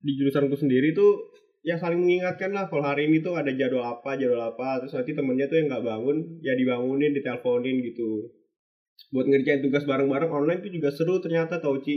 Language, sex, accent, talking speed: Indonesian, male, native, 190 wpm